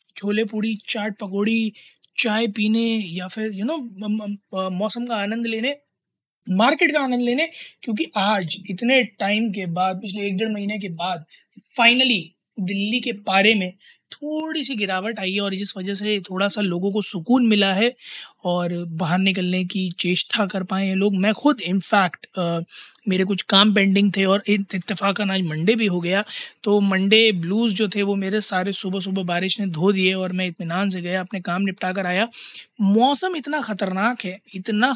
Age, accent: 20-39, native